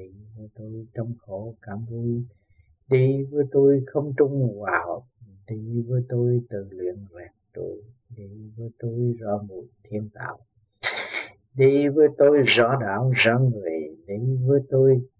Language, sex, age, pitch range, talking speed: Vietnamese, male, 50-69, 105-130 Hz, 140 wpm